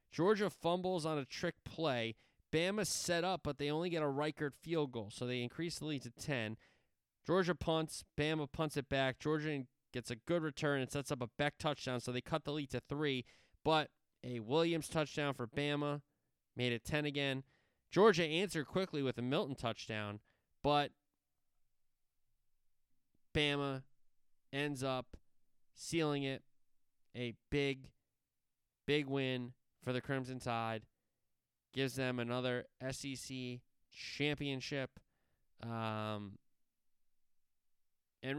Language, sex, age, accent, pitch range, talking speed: English, male, 20-39, American, 120-150 Hz, 135 wpm